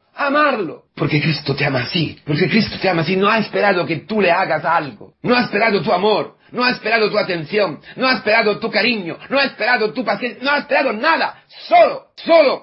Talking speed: 215 wpm